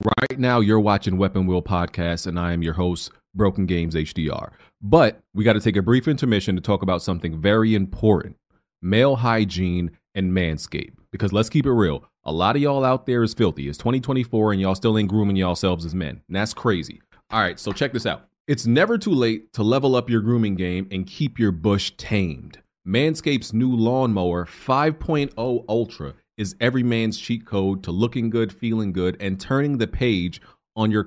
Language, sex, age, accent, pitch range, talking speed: English, male, 30-49, American, 95-115 Hz, 195 wpm